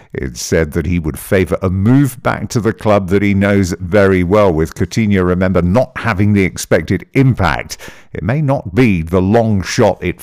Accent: British